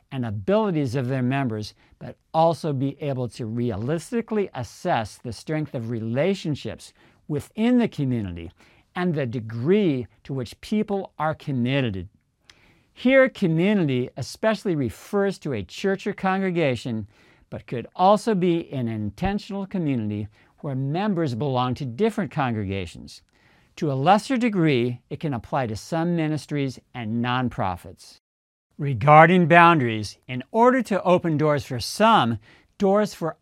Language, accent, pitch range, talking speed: English, American, 125-190 Hz, 130 wpm